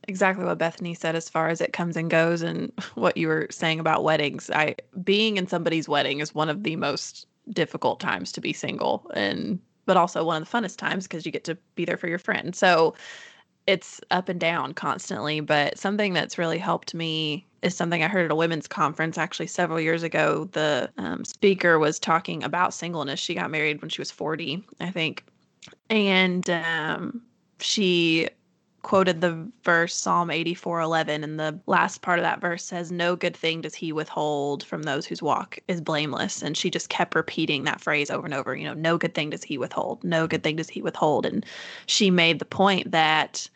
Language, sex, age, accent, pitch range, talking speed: English, female, 20-39, American, 160-185 Hz, 205 wpm